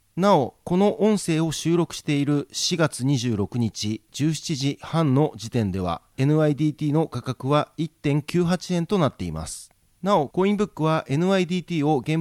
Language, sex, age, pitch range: Japanese, male, 40-59, 125-165 Hz